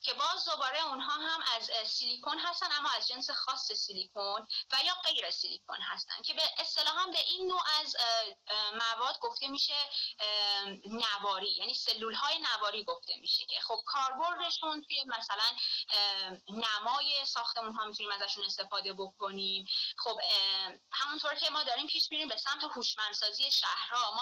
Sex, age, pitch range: female, 20-39, 205-290 Hz